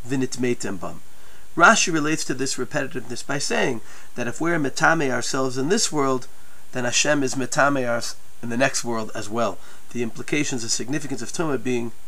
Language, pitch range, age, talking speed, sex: English, 130-160 Hz, 40-59, 175 wpm, male